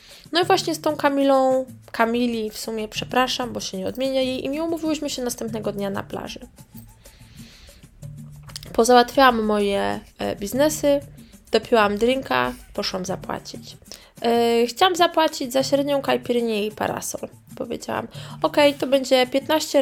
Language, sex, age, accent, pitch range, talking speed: Polish, female, 20-39, native, 200-265 Hz, 130 wpm